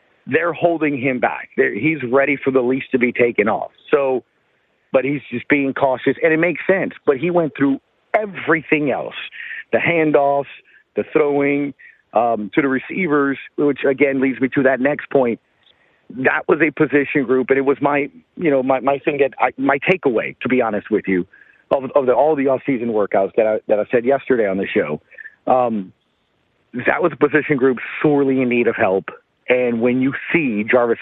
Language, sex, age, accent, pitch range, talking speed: English, male, 40-59, American, 120-145 Hz, 190 wpm